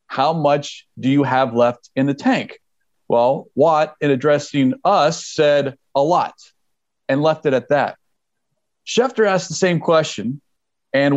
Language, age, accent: English, 40-59, American